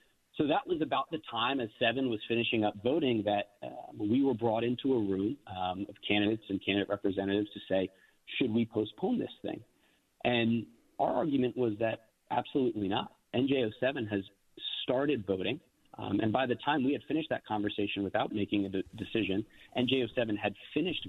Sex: male